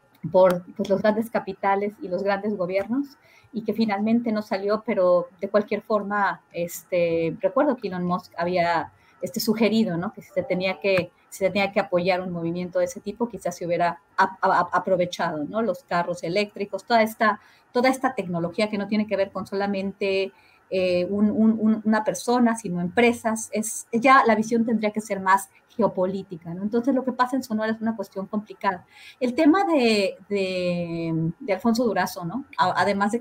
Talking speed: 180 wpm